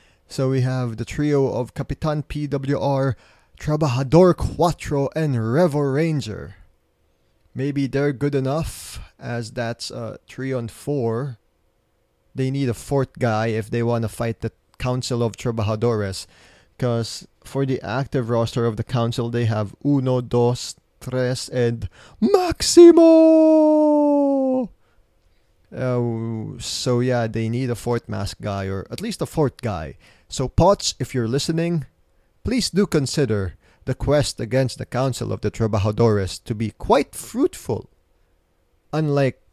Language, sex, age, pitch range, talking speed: English, male, 20-39, 105-135 Hz, 135 wpm